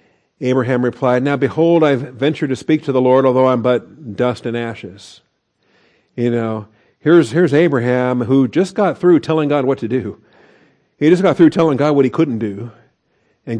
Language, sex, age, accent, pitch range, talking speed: English, male, 50-69, American, 120-150 Hz, 185 wpm